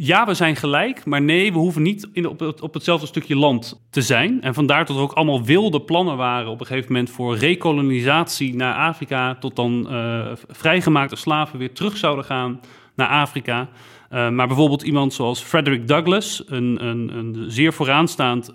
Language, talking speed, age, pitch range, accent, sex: Dutch, 190 wpm, 40-59, 125-160 Hz, Dutch, male